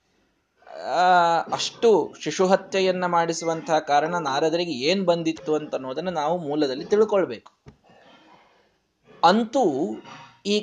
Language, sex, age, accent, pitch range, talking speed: Kannada, male, 20-39, native, 140-190 Hz, 85 wpm